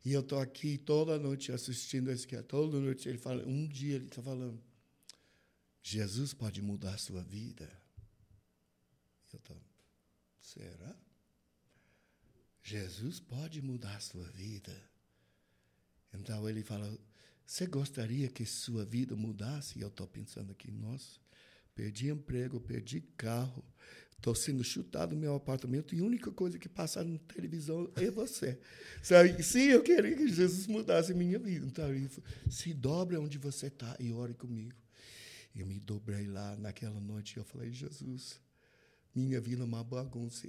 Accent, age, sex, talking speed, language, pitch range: Brazilian, 60-79, male, 150 wpm, Portuguese, 110-140 Hz